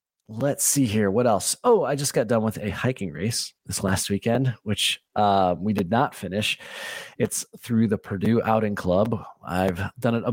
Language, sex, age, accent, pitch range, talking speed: English, male, 30-49, American, 105-135 Hz, 190 wpm